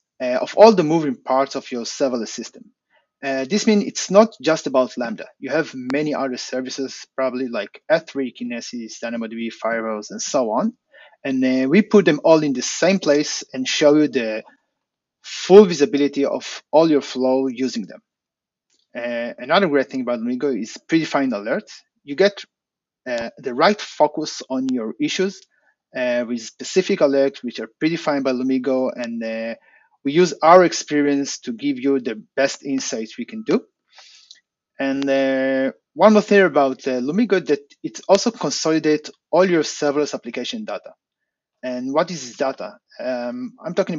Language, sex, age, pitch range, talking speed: English, male, 30-49, 130-190 Hz, 165 wpm